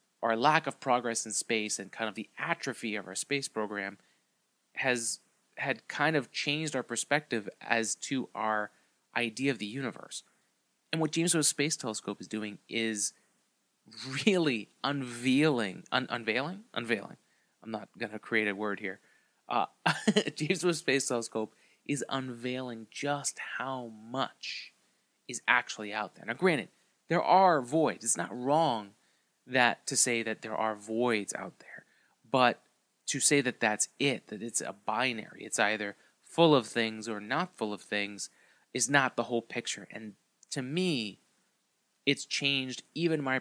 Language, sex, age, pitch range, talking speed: English, male, 20-39, 110-140 Hz, 155 wpm